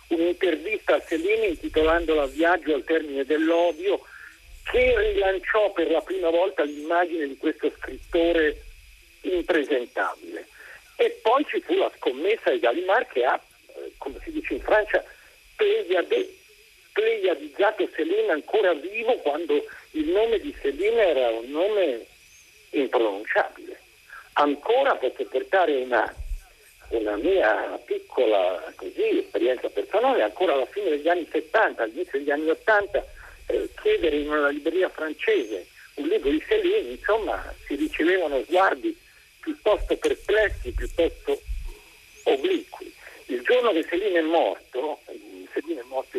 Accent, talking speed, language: native, 125 wpm, Italian